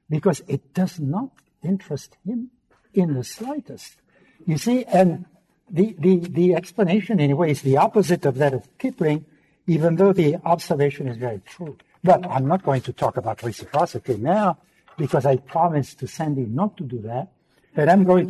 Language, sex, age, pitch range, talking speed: English, male, 60-79, 130-185 Hz, 175 wpm